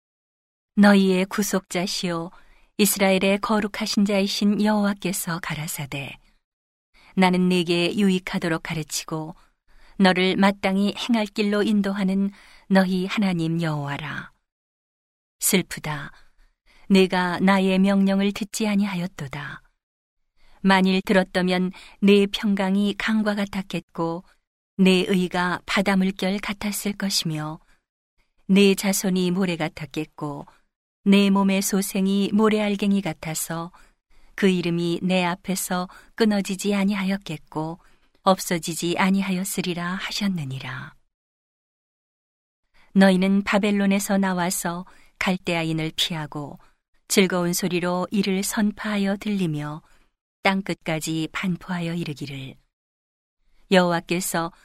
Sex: female